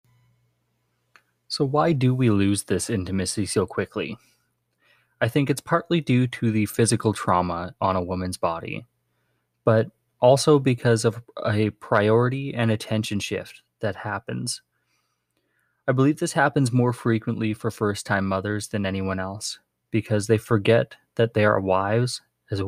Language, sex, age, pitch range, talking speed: English, male, 20-39, 95-120 Hz, 145 wpm